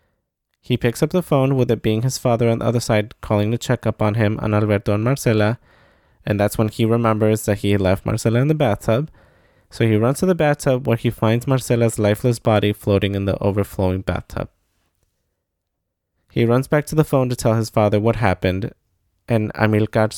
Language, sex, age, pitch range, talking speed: English, male, 20-39, 105-125 Hz, 200 wpm